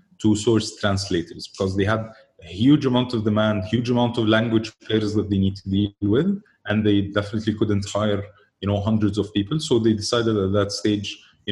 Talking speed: 205 wpm